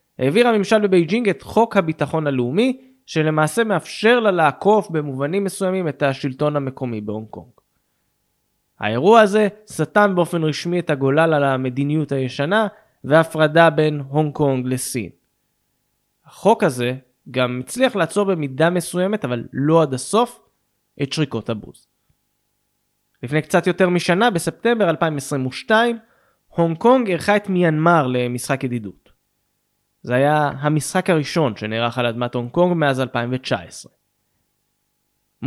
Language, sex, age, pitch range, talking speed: Hebrew, male, 20-39, 135-190 Hz, 120 wpm